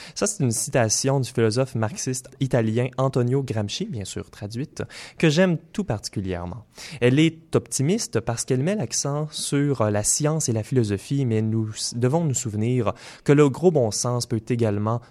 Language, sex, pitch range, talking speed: French, male, 105-135 Hz, 165 wpm